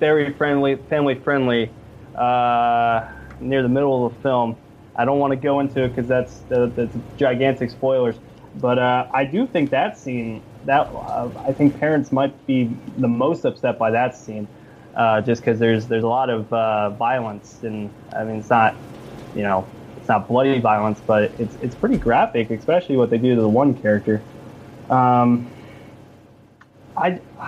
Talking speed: 170 wpm